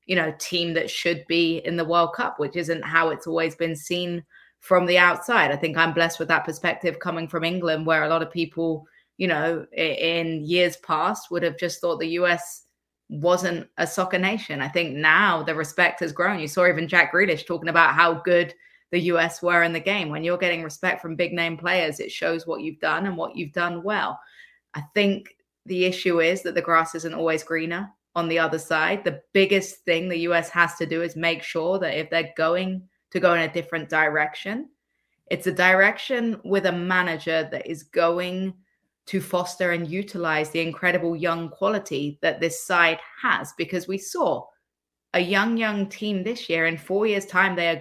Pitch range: 165-185 Hz